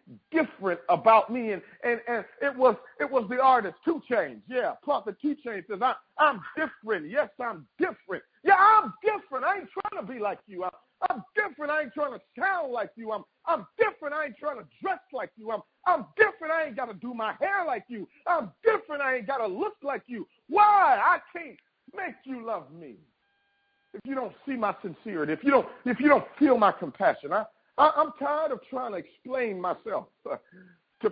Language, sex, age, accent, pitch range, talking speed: English, male, 40-59, American, 220-325 Hz, 205 wpm